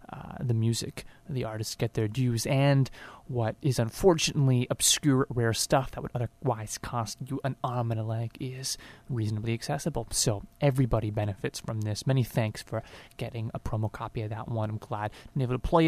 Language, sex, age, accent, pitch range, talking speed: English, male, 20-39, American, 110-130 Hz, 185 wpm